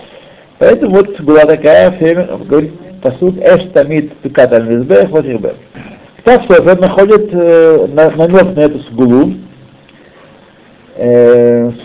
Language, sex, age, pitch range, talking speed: Russian, male, 60-79, 135-205 Hz, 120 wpm